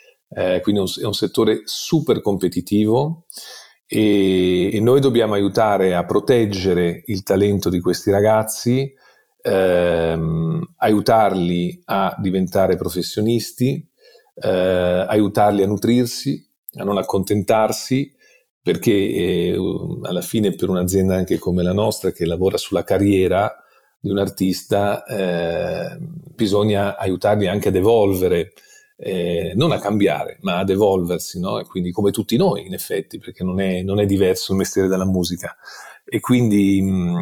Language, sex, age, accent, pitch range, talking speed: Italian, male, 40-59, native, 95-115 Hz, 125 wpm